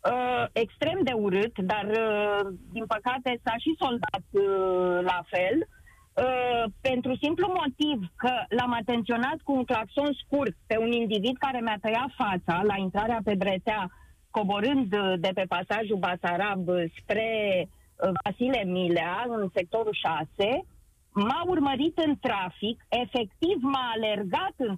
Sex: female